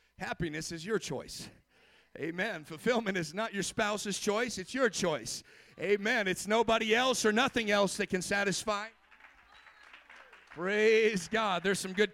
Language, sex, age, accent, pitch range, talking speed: English, male, 40-59, American, 195-250 Hz, 145 wpm